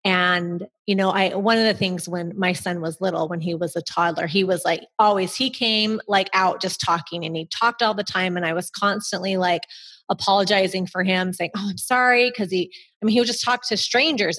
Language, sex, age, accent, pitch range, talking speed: English, female, 30-49, American, 175-210 Hz, 235 wpm